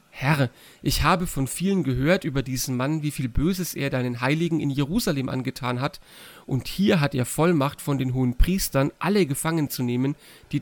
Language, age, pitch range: German, 40-59, 130-160 Hz